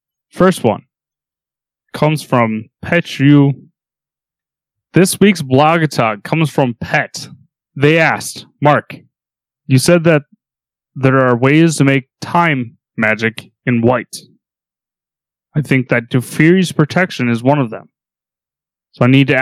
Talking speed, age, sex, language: 125 wpm, 20-39, male, English